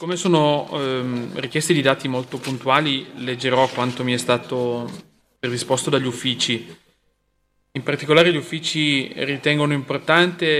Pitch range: 130-160 Hz